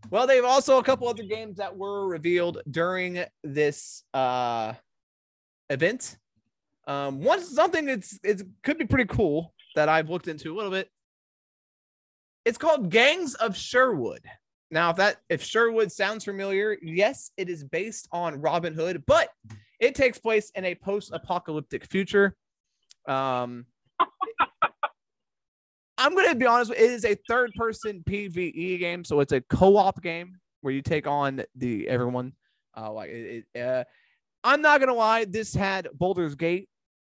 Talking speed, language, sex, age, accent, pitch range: 155 wpm, English, male, 20-39, American, 140-215 Hz